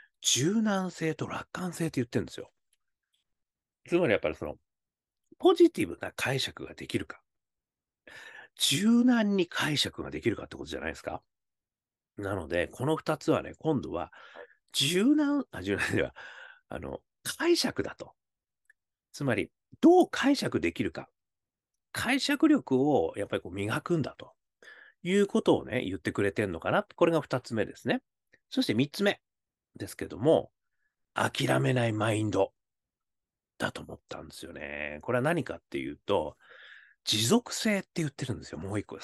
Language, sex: Japanese, male